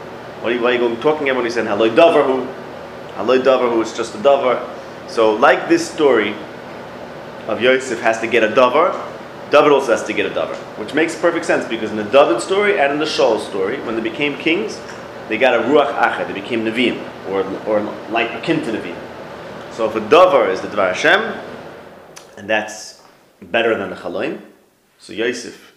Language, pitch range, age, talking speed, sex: English, 110-155 Hz, 30-49, 195 wpm, male